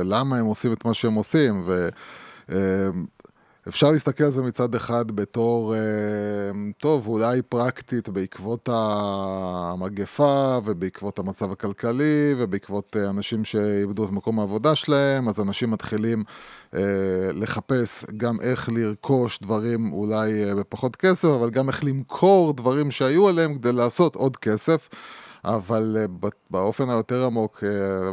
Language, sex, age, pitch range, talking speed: Hebrew, male, 20-39, 105-130 Hz, 120 wpm